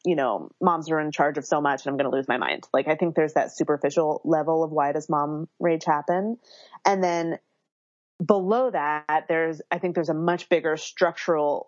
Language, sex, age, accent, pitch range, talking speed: English, female, 30-49, American, 145-175 Hz, 210 wpm